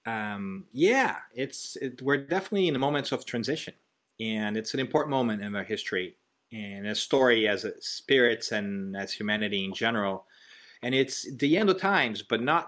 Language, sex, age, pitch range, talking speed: English, male, 30-49, 110-135 Hz, 180 wpm